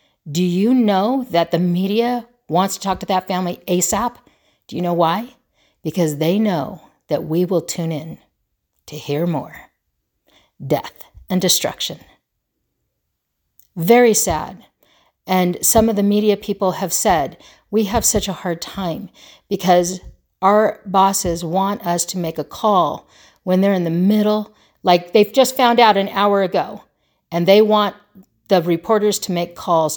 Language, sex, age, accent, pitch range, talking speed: English, female, 50-69, American, 175-225 Hz, 155 wpm